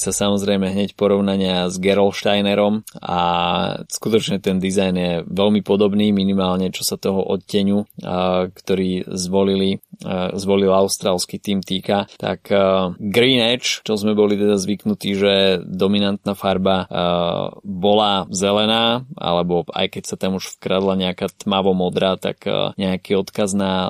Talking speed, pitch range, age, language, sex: 125 wpm, 95-105 Hz, 20-39, Slovak, male